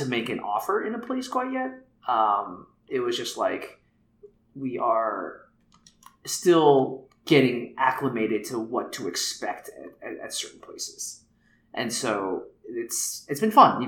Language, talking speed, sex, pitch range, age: English, 150 wpm, male, 115-180 Hz, 20-39